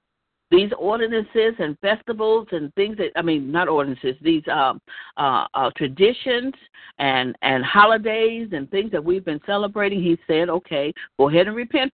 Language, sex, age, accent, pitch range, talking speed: English, female, 50-69, American, 170-230 Hz, 160 wpm